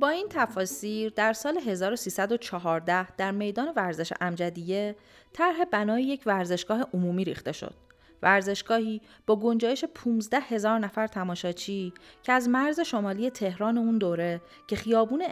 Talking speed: 130 wpm